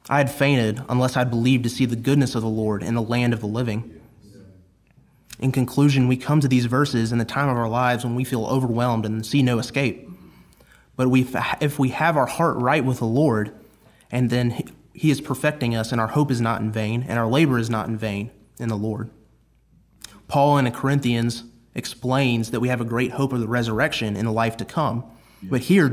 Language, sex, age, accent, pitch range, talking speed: English, male, 30-49, American, 115-140 Hz, 220 wpm